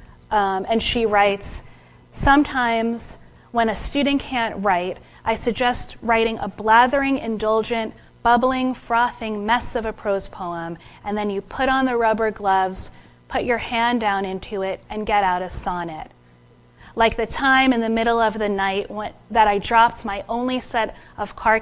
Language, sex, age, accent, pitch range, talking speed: English, female, 30-49, American, 165-225 Hz, 165 wpm